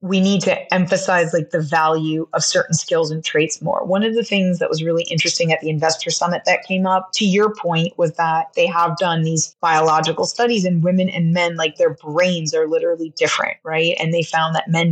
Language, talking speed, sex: English, 220 wpm, female